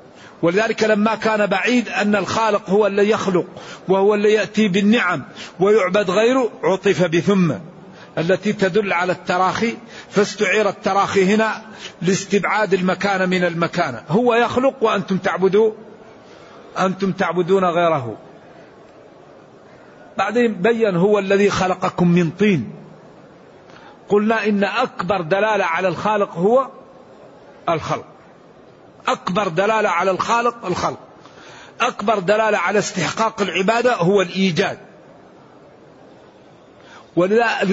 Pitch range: 190-220 Hz